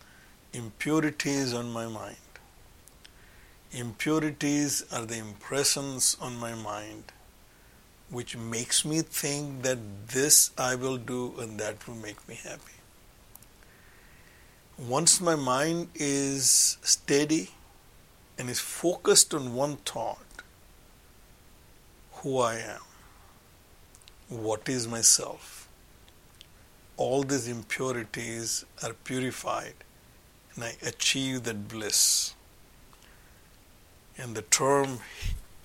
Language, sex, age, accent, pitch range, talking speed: English, male, 60-79, Indian, 110-140 Hz, 95 wpm